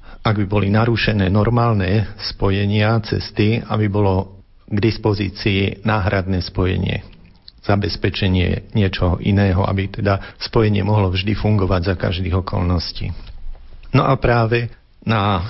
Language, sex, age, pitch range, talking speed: Slovak, male, 50-69, 95-110 Hz, 110 wpm